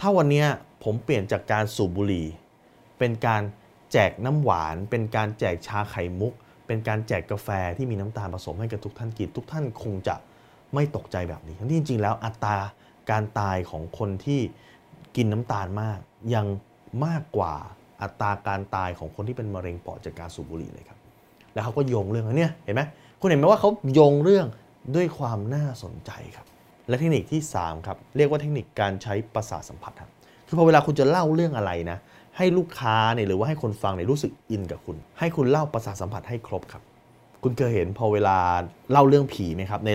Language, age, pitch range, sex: Thai, 20-39, 100-135 Hz, male